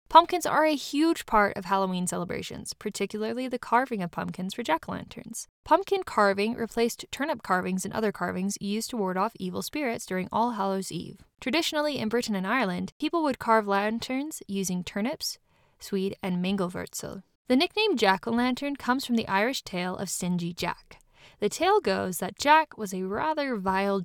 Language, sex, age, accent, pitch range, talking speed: English, female, 10-29, American, 185-250 Hz, 165 wpm